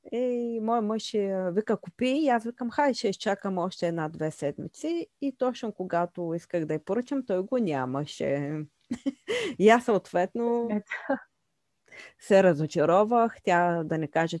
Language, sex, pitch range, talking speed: Bulgarian, female, 160-240 Hz, 135 wpm